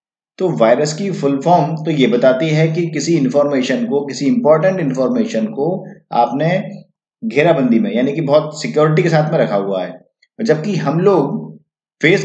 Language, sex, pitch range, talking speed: Hindi, male, 125-170 Hz, 165 wpm